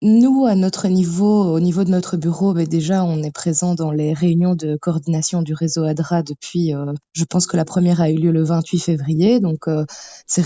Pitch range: 160-185 Hz